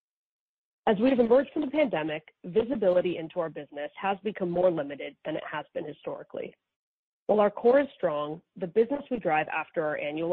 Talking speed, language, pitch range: 185 wpm, English, 160-220 Hz